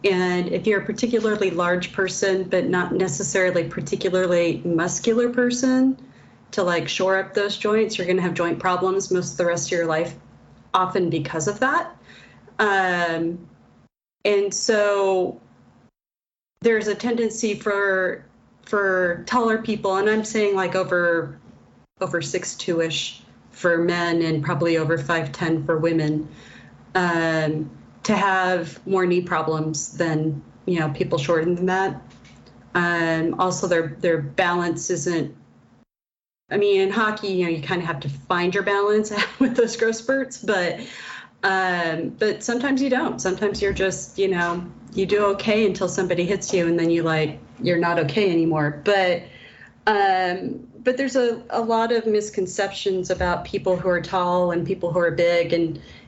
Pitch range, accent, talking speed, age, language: 170-205 Hz, American, 155 wpm, 30-49, English